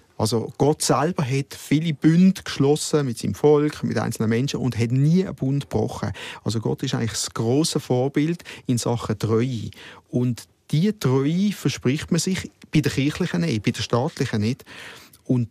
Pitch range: 125-170 Hz